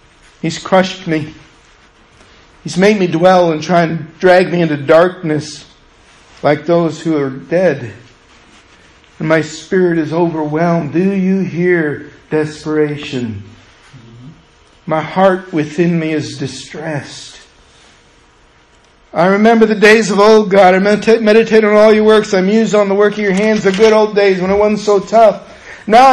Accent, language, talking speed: American, English, 150 wpm